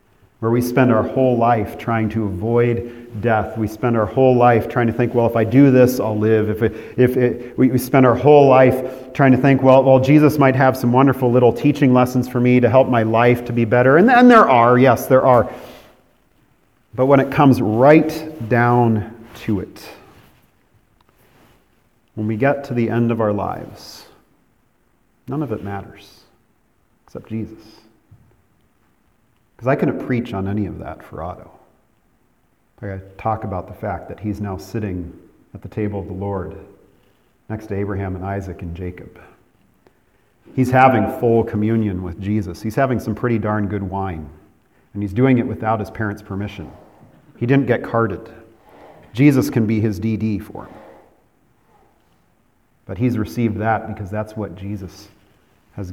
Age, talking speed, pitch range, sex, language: 40-59, 175 wpm, 100-125 Hz, male, English